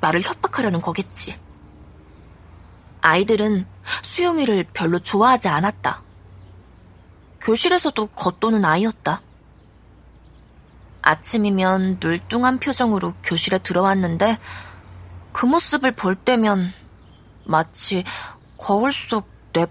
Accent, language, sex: native, Korean, female